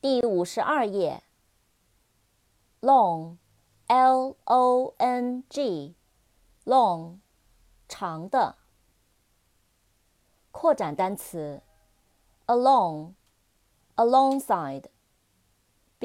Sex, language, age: female, Chinese, 30-49